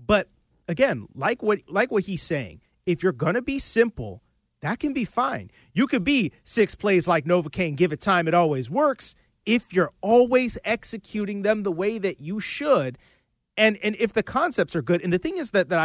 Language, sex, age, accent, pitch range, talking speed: English, male, 30-49, American, 170-230 Hz, 205 wpm